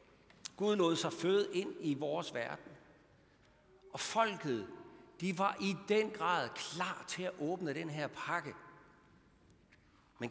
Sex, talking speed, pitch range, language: male, 135 wpm, 140-190 Hz, Danish